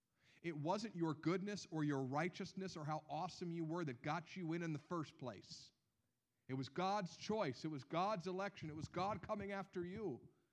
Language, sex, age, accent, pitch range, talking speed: English, male, 50-69, American, 135-205 Hz, 195 wpm